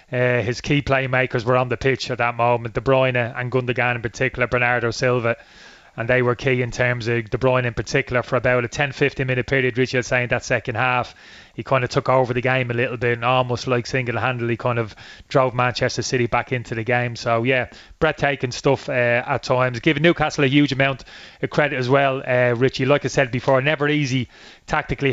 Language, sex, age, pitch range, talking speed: English, male, 20-39, 125-135 Hz, 215 wpm